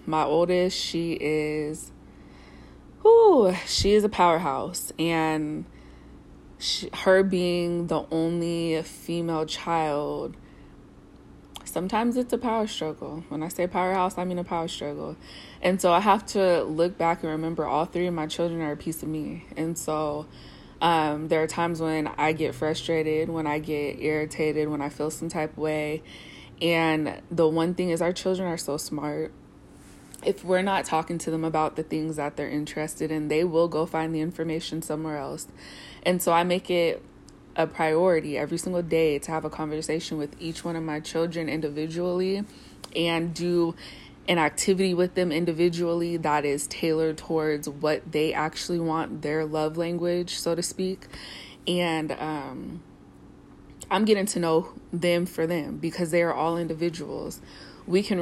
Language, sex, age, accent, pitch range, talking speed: English, female, 20-39, American, 155-175 Hz, 165 wpm